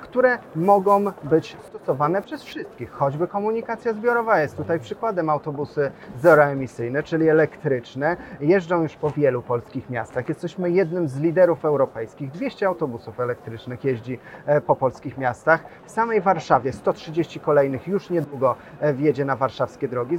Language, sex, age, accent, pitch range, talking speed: Polish, male, 30-49, native, 135-185 Hz, 135 wpm